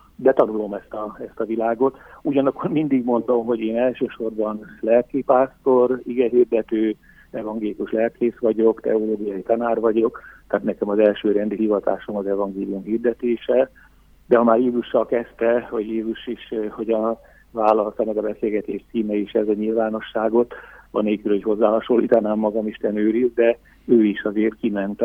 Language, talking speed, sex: Hungarian, 145 wpm, male